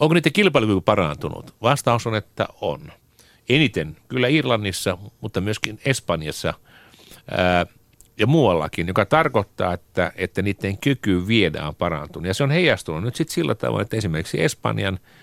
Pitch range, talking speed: 90-125 Hz, 145 wpm